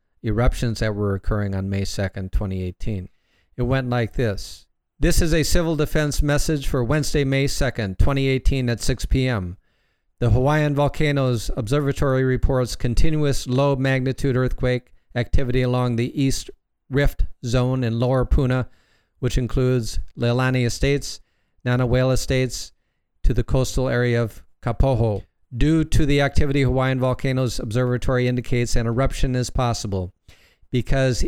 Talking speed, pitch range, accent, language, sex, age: 135 wpm, 110-130 Hz, American, English, male, 50-69